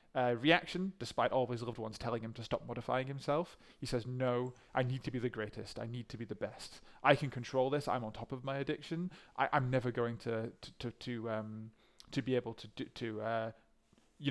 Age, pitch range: 20-39, 115-135 Hz